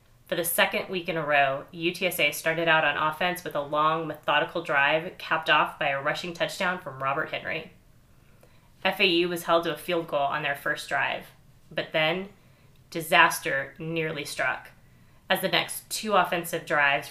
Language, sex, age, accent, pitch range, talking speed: English, female, 20-39, American, 150-180 Hz, 170 wpm